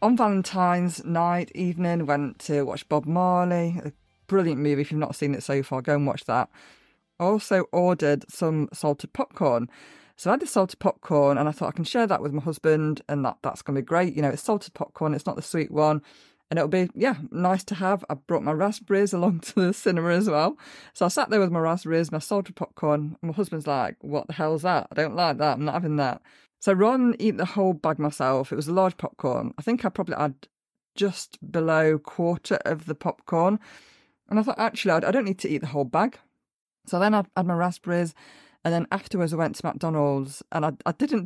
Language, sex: English, female